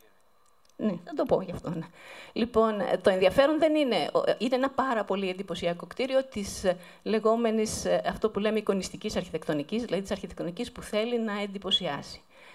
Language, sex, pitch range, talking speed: Greek, female, 190-255 Hz, 155 wpm